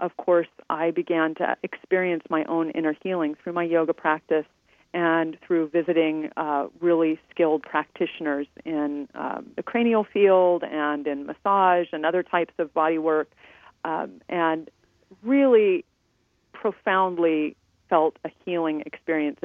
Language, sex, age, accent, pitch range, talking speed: English, female, 40-59, American, 150-175 Hz, 135 wpm